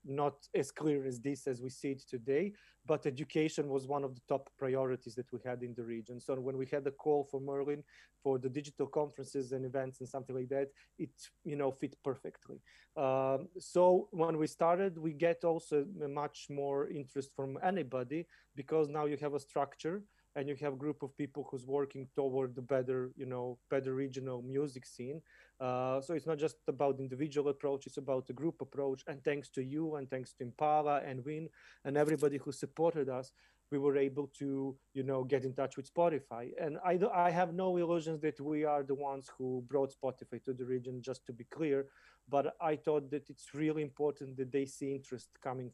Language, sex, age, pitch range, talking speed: Croatian, male, 30-49, 130-150 Hz, 205 wpm